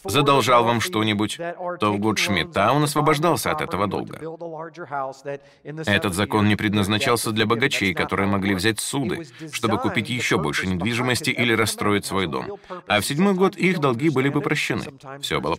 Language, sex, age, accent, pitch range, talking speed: Russian, male, 30-49, native, 110-155 Hz, 160 wpm